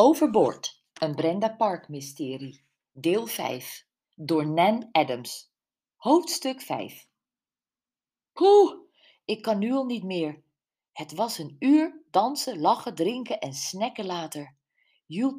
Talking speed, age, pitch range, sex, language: 115 wpm, 50-69, 155-225 Hz, female, Dutch